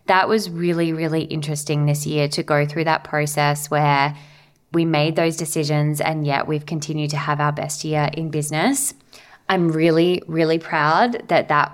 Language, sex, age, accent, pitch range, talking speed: English, female, 20-39, Australian, 150-165 Hz, 175 wpm